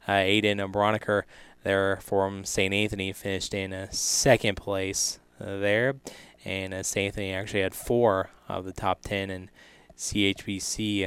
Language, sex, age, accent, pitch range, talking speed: English, male, 20-39, American, 95-110 Hz, 145 wpm